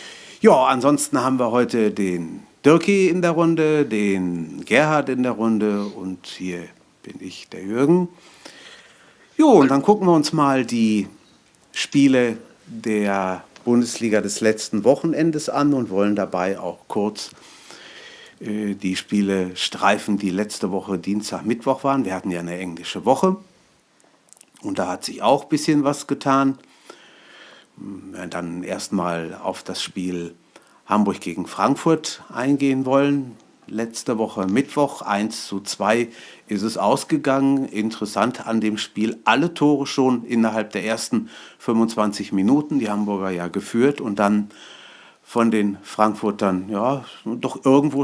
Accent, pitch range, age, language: German, 100-140 Hz, 50-69, German